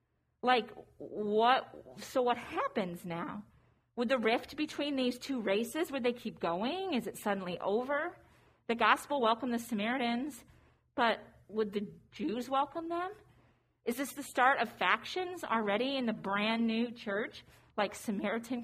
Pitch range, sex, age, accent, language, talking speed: 210-265 Hz, female, 40-59, American, English, 150 wpm